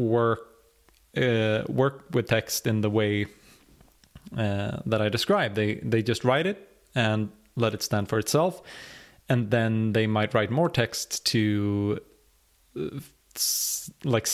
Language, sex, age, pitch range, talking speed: English, male, 20-39, 105-125 Hz, 140 wpm